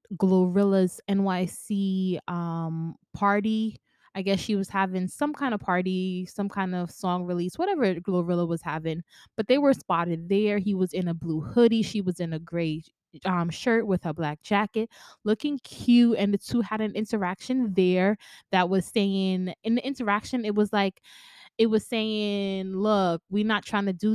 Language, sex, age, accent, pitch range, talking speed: English, female, 20-39, American, 185-230 Hz, 175 wpm